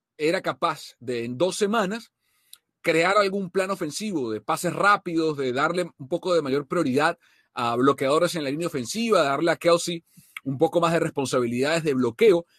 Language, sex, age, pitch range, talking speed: Spanish, male, 40-59, 140-185 Hz, 170 wpm